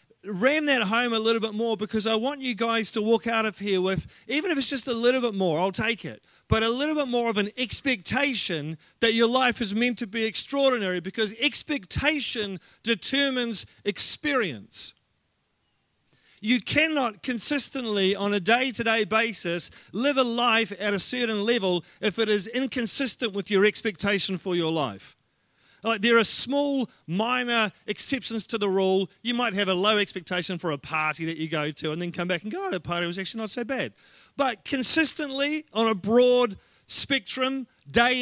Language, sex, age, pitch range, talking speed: English, male, 40-59, 195-250 Hz, 180 wpm